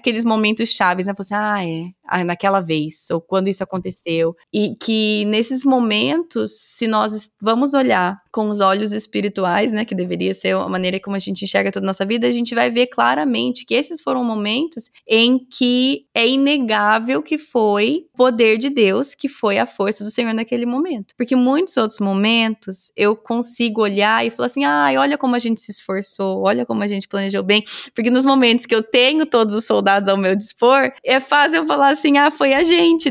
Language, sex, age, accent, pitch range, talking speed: Portuguese, female, 20-39, Brazilian, 205-255 Hz, 200 wpm